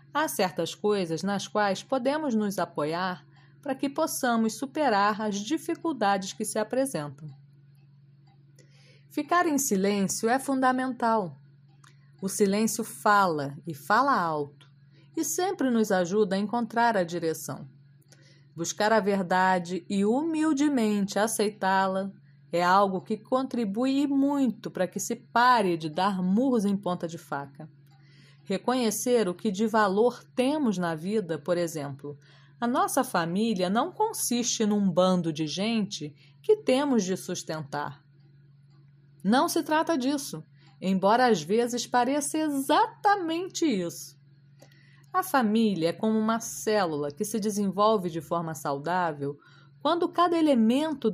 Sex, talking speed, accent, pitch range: female, 125 wpm, Brazilian, 150-240 Hz